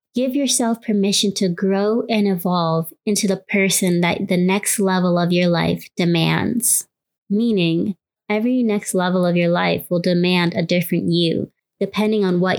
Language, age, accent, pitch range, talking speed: English, 20-39, American, 180-210 Hz, 155 wpm